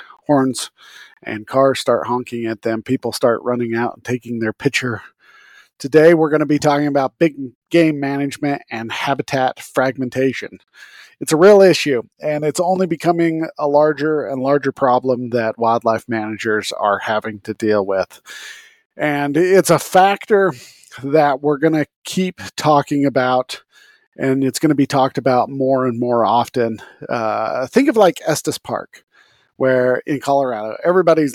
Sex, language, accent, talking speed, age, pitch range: male, English, American, 155 wpm, 50-69, 125-150 Hz